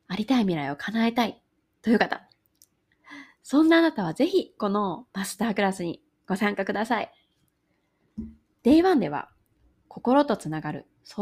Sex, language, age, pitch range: female, Japanese, 20-39, 170-275 Hz